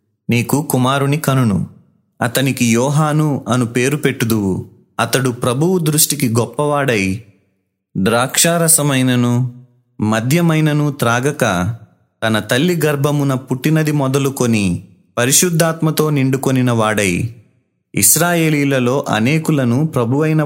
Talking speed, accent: 75 wpm, native